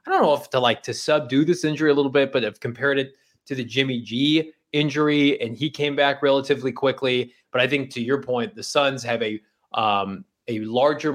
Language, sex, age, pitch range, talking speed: English, male, 20-39, 115-140 Hz, 220 wpm